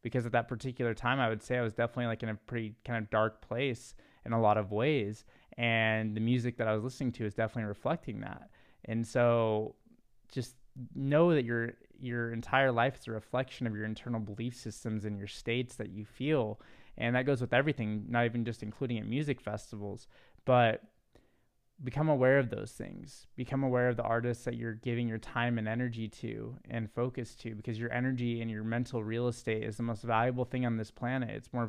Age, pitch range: 20-39, 110-120 Hz